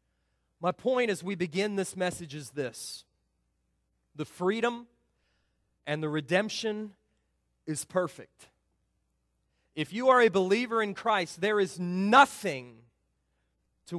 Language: English